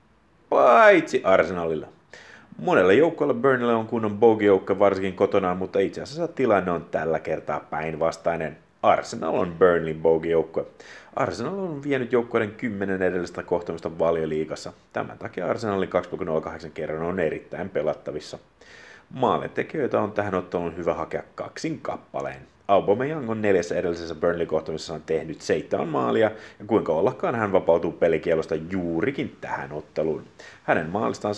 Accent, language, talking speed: native, Finnish, 125 wpm